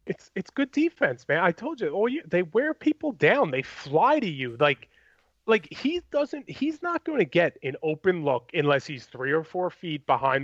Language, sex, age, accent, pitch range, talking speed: English, male, 30-49, American, 145-225 Hz, 205 wpm